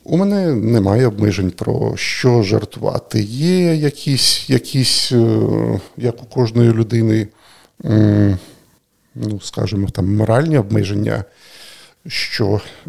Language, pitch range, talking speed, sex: Ukrainian, 105-125 Hz, 95 wpm, male